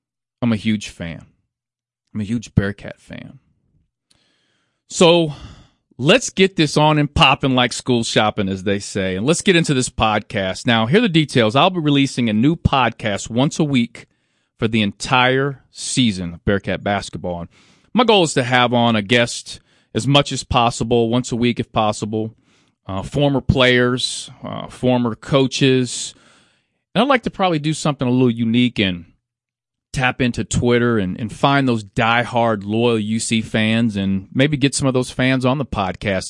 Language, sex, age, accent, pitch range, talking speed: English, male, 40-59, American, 105-130 Hz, 175 wpm